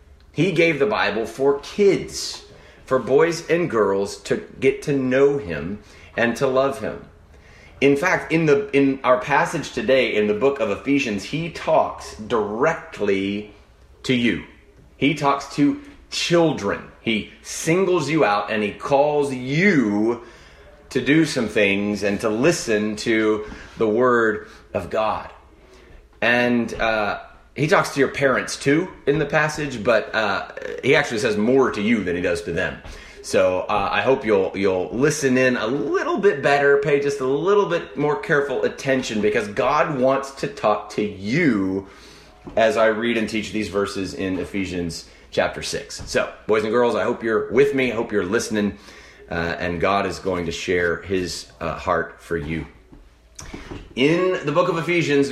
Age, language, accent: 30-49, English, American